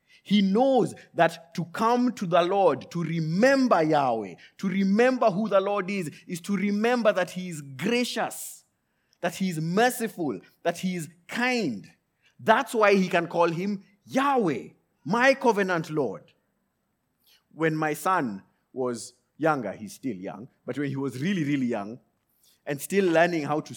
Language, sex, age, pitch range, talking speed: English, male, 30-49, 140-205 Hz, 155 wpm